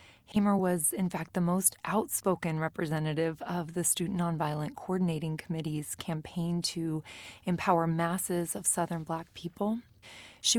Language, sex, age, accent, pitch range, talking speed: English, female, 30-49, American, 165-195 Hz, 130 wpm